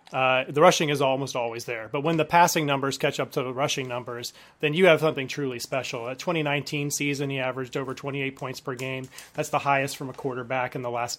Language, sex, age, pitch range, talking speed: English, male, 30-49, 130-150 Hz, 230 wpm